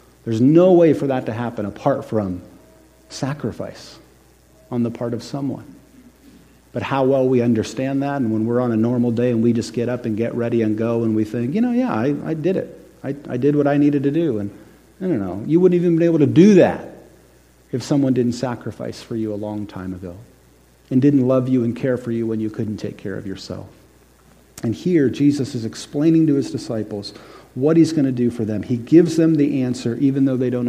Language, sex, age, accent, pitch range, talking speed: English, male, 40-59, American, 105-135 Hz, 230 wpm